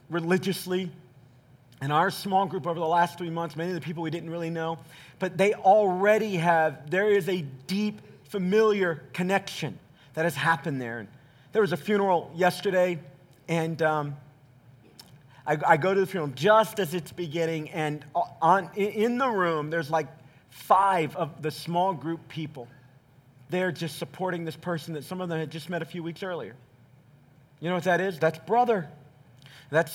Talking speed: 170 wpm